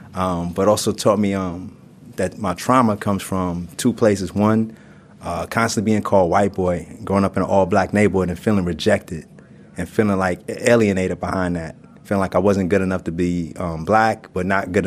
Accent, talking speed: American, 195 wpm